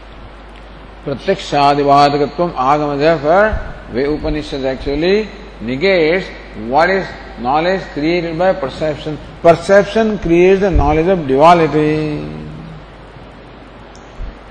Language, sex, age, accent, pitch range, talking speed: English, male, 50-69, Indian, 150-200 Hz, 75 wpm